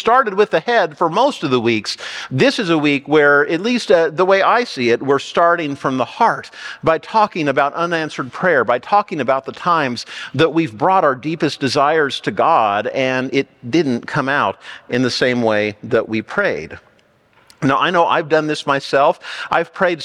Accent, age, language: American, 50-69, English